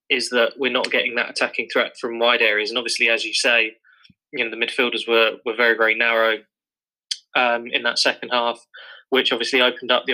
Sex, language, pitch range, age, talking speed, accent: male, English, 115-150 Hz, 20-39, 205 wpm, British